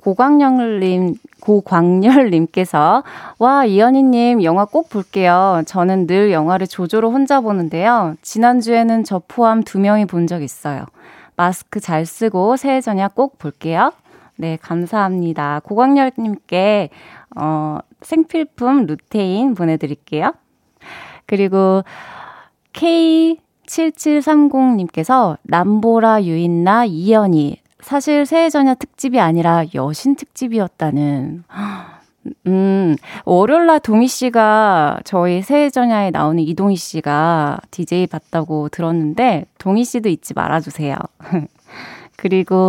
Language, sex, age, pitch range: Korean, female, 20-39, 165-240 Hz